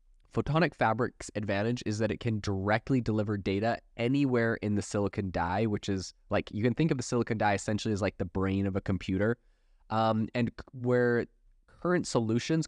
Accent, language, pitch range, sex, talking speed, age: American, English, 100-120 Hz, male, 185 wpm, 20-39